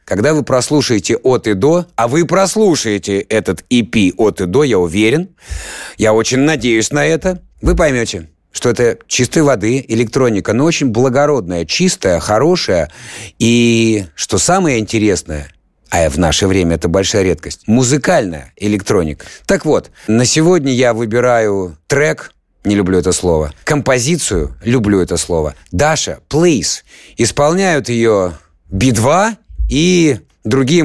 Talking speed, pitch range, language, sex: 135 wpm, 100-145 Hz, Russian, male